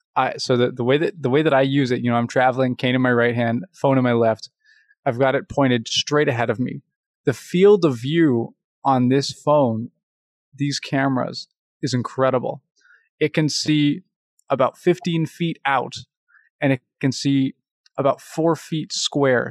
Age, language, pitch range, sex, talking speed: 20-39, English, 125-150 Hz, male, 170 wpm